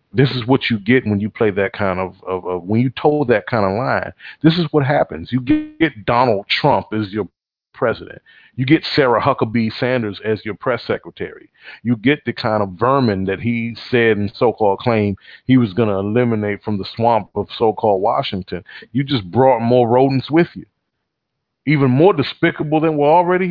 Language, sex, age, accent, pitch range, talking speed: English, male, 40-59, American, 115-165 Hz, 195 wpm